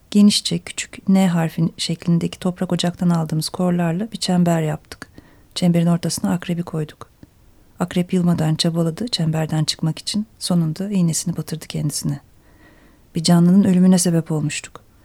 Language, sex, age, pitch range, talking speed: Turkish, female, 40-59, 160-190 Hz, 125 wpm